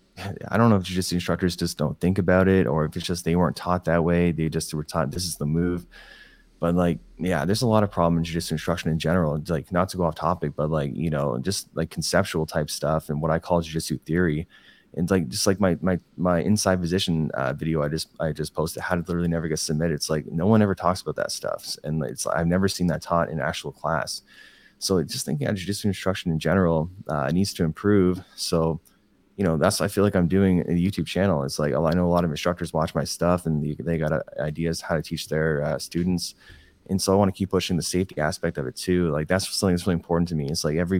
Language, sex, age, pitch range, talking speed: English, male, 20-39, 80-90 Hz, 260 wpm